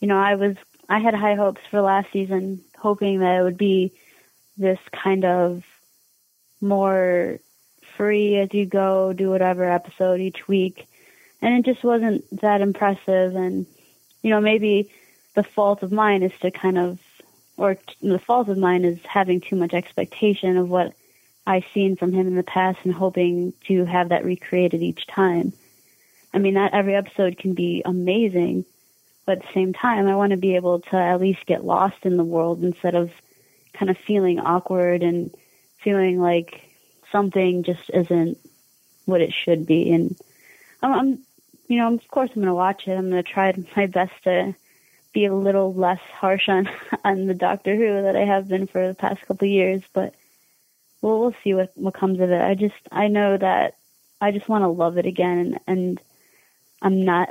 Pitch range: 180-200 Hz